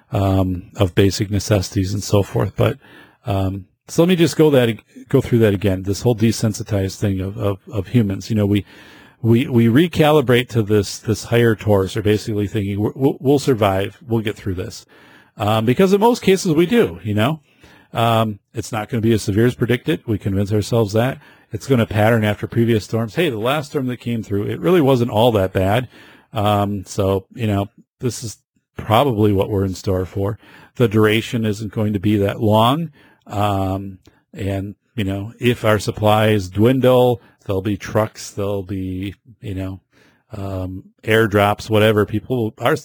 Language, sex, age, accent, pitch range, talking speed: English, male, 40-59, American, 100-125 Hz, 180 wpm